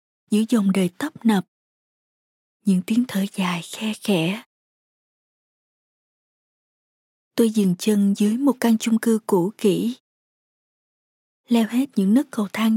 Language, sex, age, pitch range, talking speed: Vietnamese, female, 20-39, 195-235 Hz, 125 wpm